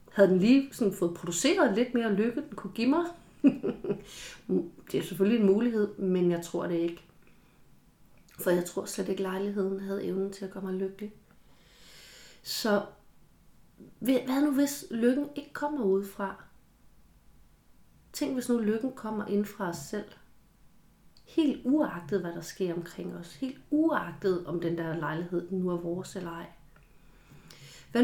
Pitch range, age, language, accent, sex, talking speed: 180-230 Hz, 30-49, Danish, native, female, 155 wpm